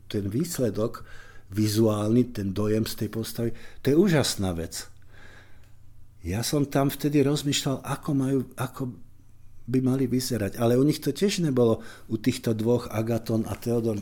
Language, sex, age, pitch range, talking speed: Slovak, male, 50-69, 105-130 Hz, 150 wpm